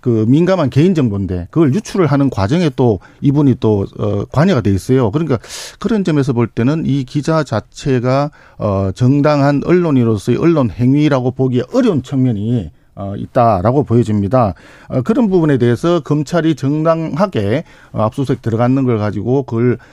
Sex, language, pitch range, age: male, Korean, 120-170 Hz, 50-69